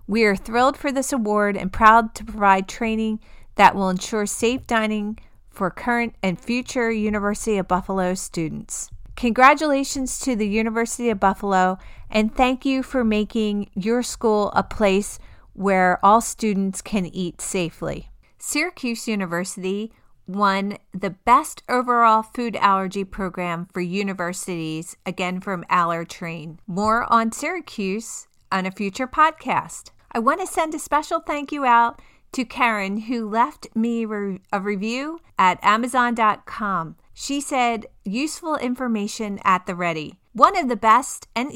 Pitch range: 195-250 Hz